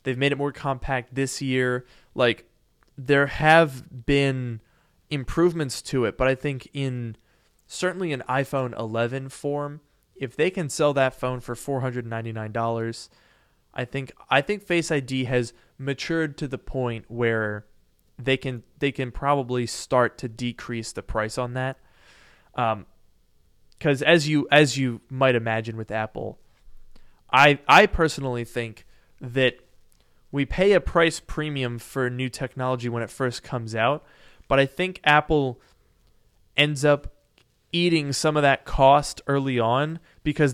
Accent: American